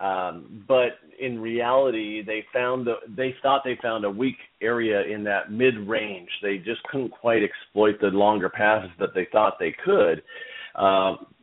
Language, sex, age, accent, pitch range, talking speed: English, male, 40-59, American, 110-130 Hz, 170 wpm